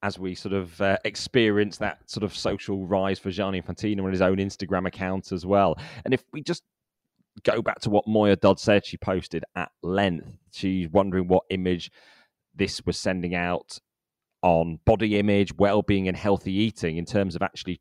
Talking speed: 190 wpm